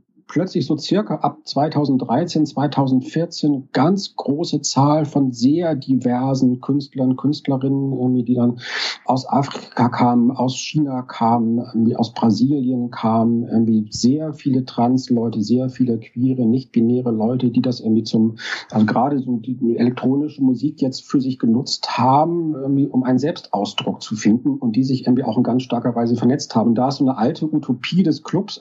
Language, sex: German, male